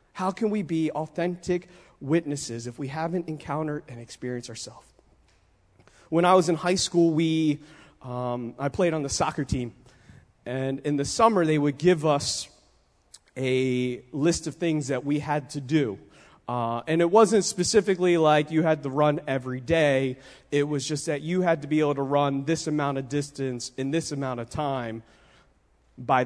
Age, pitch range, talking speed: 30-49, 135-170 Hz, 175 wpm